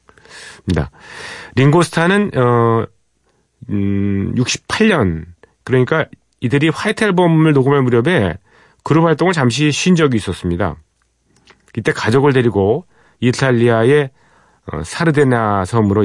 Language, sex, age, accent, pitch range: Korean, male, 40-59, native, 100-135 Hz